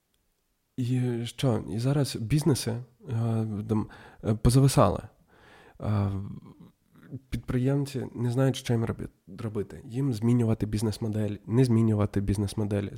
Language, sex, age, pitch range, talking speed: Ukrainian, male, 20-39, 105-125 Hz, 85 wpm